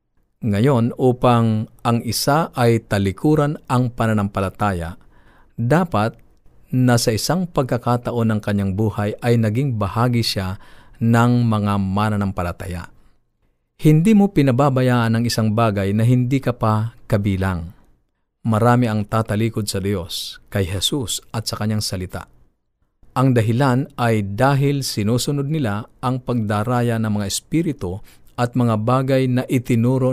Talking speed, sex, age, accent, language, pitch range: 120 wpm, male, 50-69, native, Filipino, 105-125 Hz